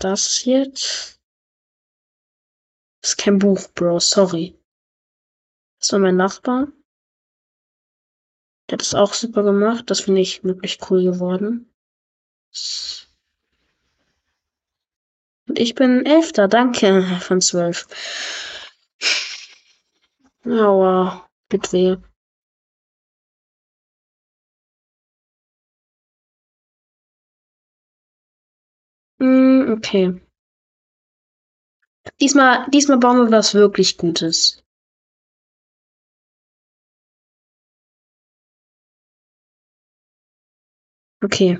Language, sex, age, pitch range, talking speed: German, female, 20-39, 175-230 Hz, 60 wpm